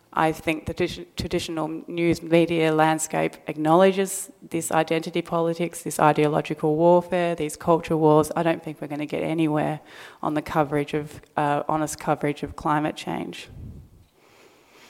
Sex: female